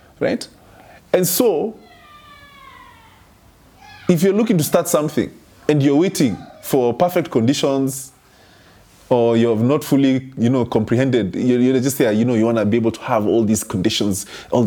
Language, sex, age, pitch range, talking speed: English, male, 20-39, 105-140 Hz, 160 wpm